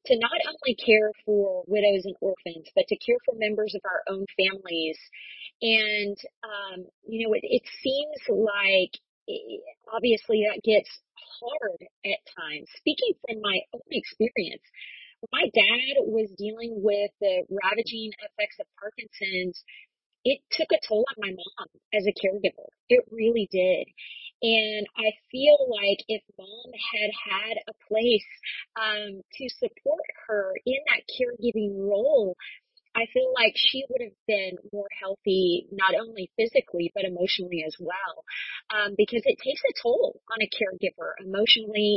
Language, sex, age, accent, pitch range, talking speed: English, female, 30-49, American, 195-240 Hz, 150 wpm